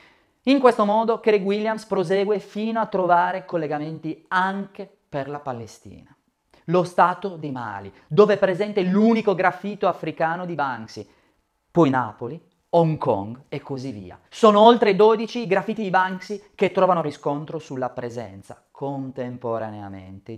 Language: Italian